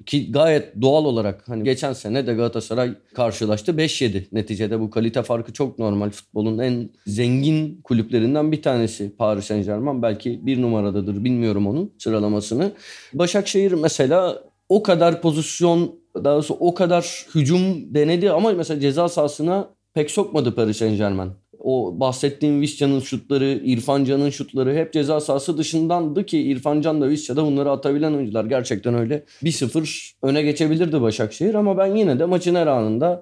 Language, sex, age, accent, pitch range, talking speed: Turkish, male, 30-49, native, 115-155 Hz, 155 wpm